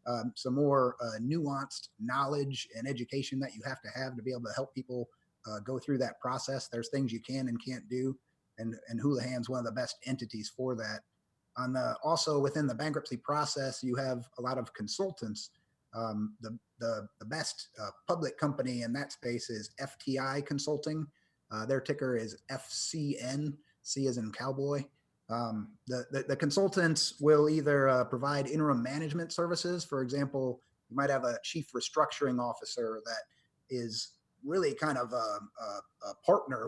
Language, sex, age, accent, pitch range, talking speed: English, male, 30-49, American, 125-145 Hz, 175 wpm